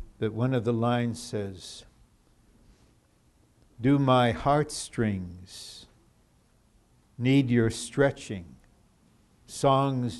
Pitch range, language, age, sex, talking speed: 105-130 Hz, English, 60-79, male, 75 wpm